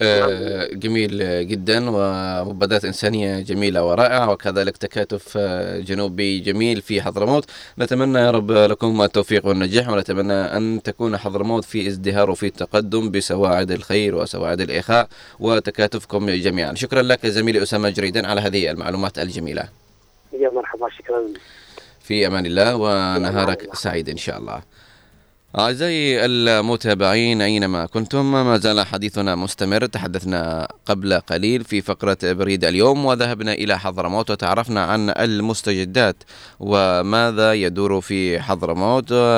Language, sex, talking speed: Arabic, male, 115 wpm